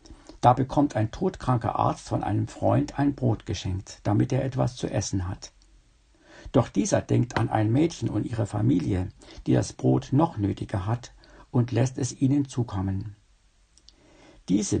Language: German